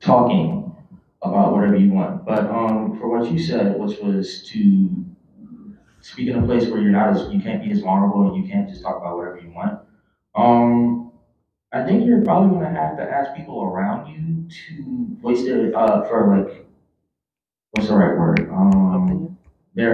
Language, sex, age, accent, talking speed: English, male, 20-39, American, 185 wpm